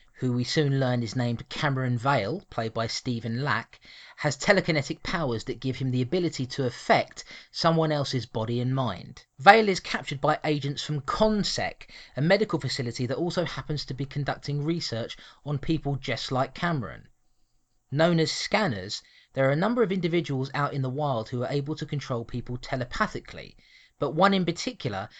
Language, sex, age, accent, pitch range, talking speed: English, male, 30-49, British, 125-160 Hz, 175 wpm